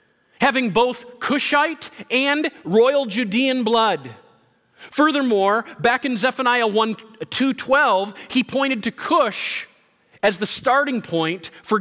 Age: 40-59